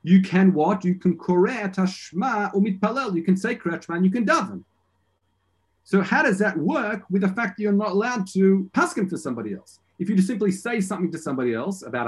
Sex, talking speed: male, 205 wpm